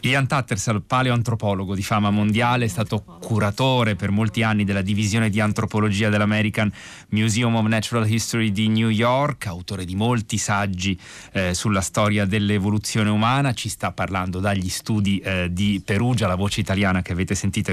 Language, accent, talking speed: Italian, native, 160 wpm